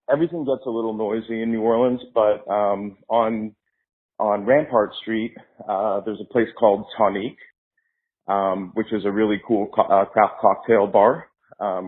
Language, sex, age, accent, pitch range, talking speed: English, male, 40-59, American, 95-110 Hz, 160 wpm